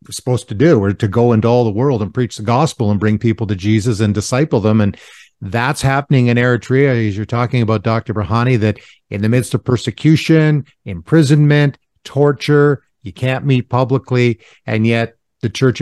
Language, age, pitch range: English, 50-69, 115-130 Hz